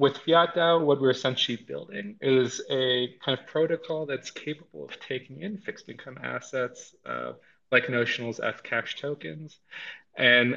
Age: 30-49